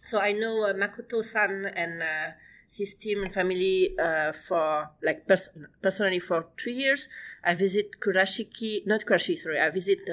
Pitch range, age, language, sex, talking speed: 155-195 Hz, 30-49, English, female, 165 wpm